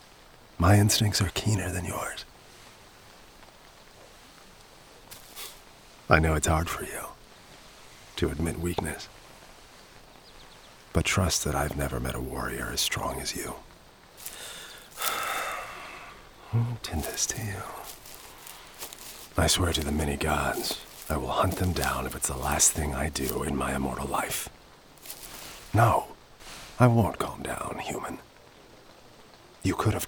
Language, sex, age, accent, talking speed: English, male, 40-59, American, 125 wpm